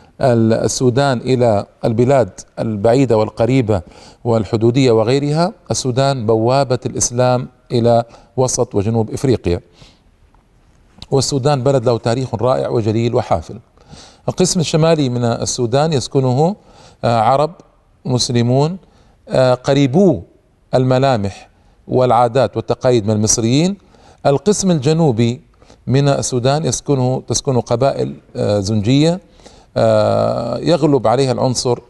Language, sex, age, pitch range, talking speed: Arabic, male, 40-59, 115-150 Hz, 85 wpm